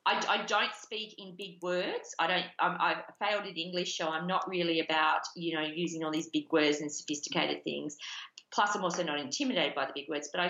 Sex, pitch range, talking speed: female, 165-200 Hz, 225 wpm